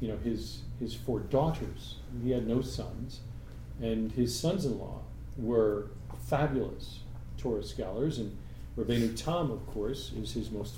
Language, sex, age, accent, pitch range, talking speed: English, male, 40-59, American, 110-125 Hz, 140 wpm